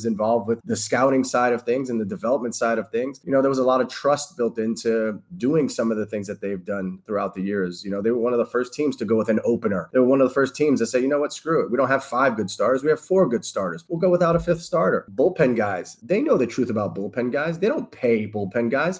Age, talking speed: 20-39, 295 wpm